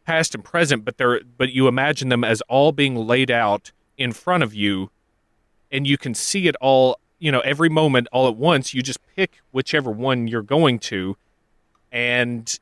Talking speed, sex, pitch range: 190 wpm, male, 115-150 Hz